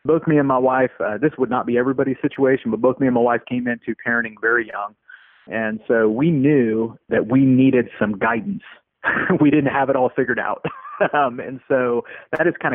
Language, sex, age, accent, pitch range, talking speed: English, male, 30-49, American, 115-135 Hz, 210 wpm